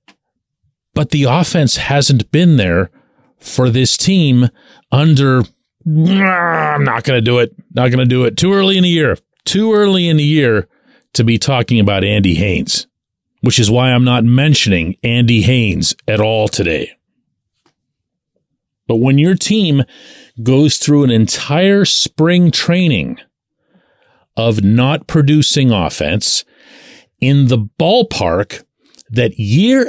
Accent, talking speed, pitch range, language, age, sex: American, 135 wpm, 115-155 Hz, English, 40-59, male